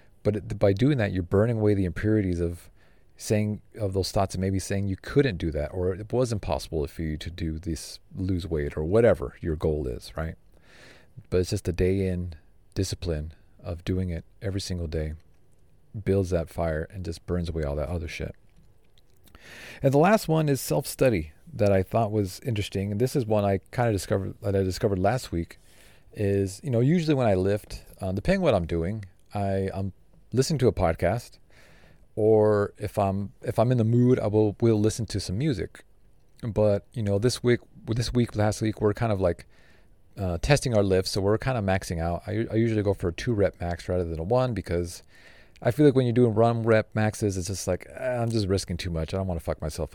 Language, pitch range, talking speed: English, 90-110 Hz, 220 wpm